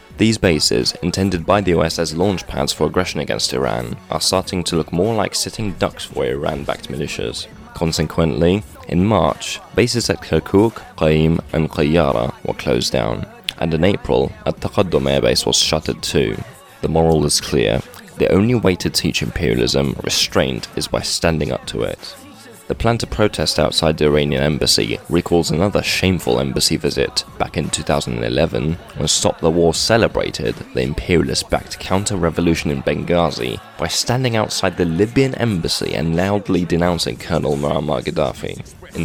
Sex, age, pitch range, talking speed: male, 20-39, 75-100 Hz, 160 wpm